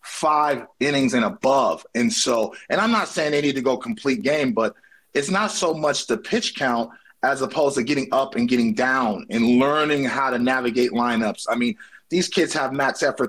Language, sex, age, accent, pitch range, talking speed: English, male, 30-49, American, 130-175 Hz, 205 wpm